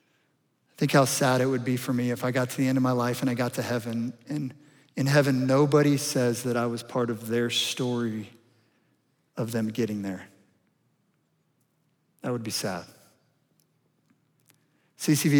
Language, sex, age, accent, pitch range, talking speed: English, male, 40-59, American, 125-150 Hz, 170 wpm